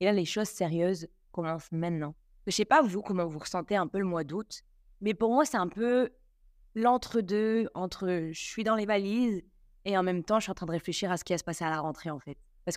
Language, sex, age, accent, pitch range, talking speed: French, female, 20-39, French, 175-205 Hz, 265 wpm